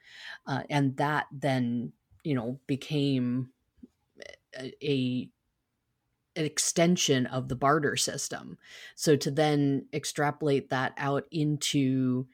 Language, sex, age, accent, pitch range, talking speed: English, female, 30-49, American, 130-155 Hz, 105 wpm